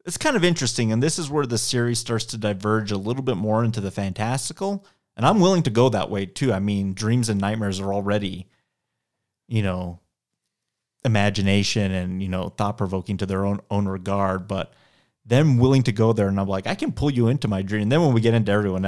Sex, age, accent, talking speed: male, 30-49, American, 225 wpm